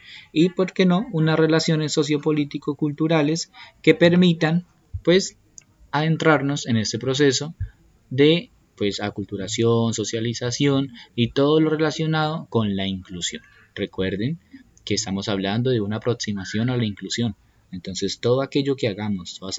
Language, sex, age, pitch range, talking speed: Spanish, male, 20-39, 100-145 Hz, 120 wpm